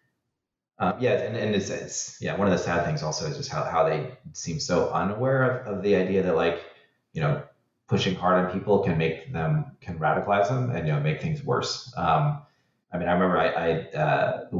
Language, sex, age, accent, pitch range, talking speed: English, male, 30-49, American, 90-150 Hz, 220 wpm